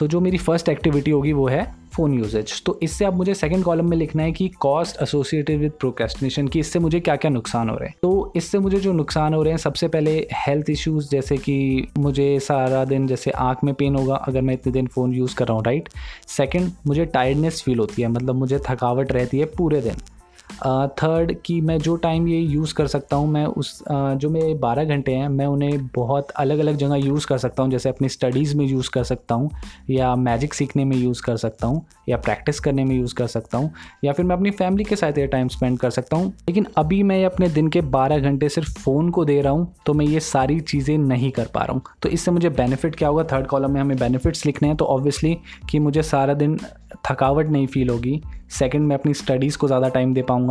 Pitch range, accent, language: 130-155 Hz, native, Hindi